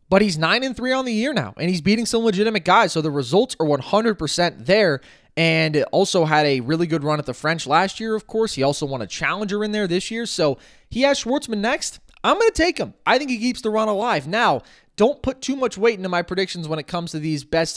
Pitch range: 150-210 Hz